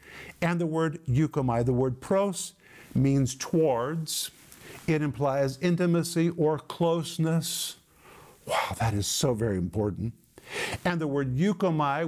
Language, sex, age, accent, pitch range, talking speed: English, male, 50-69, American, 135-170 Hz, 120 wpm